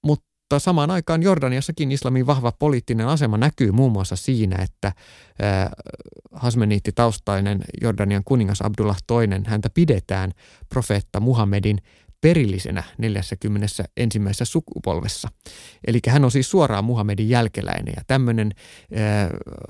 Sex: male